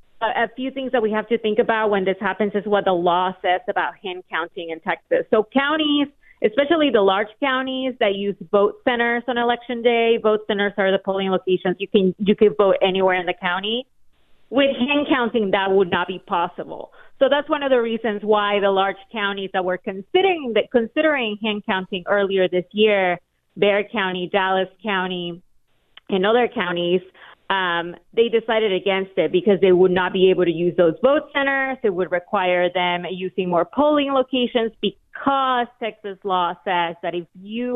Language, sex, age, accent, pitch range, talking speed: English, female, 30-49, American, 185-235 Hz, 185 wpm